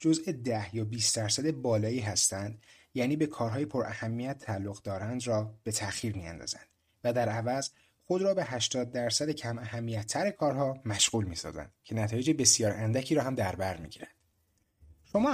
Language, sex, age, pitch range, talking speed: Persian, male, 30-49, 110-150 Hz, 155 wpm